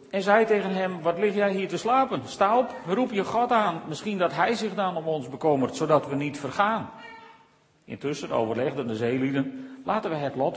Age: 40-59